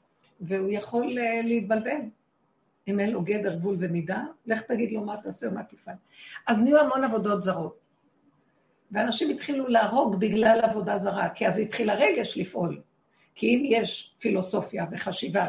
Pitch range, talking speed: 190-235 Hz, 145 wpm